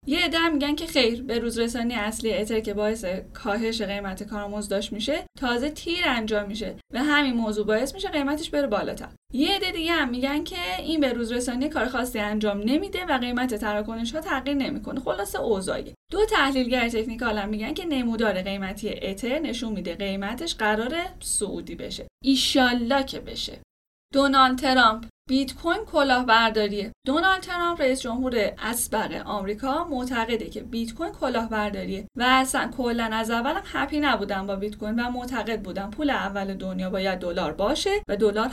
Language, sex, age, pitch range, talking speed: Persian, female, 10-29, 210-275 Hz, 160 wpm